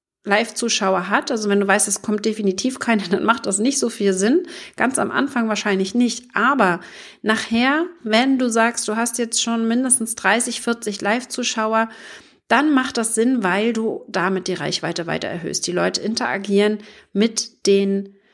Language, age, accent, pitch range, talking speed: German, 40-59, German, 195-245 Hz, 165 wpm